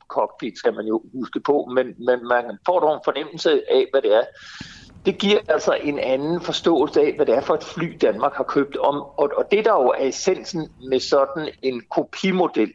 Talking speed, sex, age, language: 210 wpm, male, 60-79, Danish